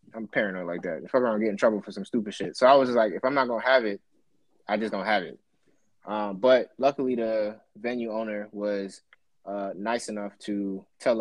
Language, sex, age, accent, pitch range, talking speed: English, male, 20-39, American, 100-140 Hz, 230 wpm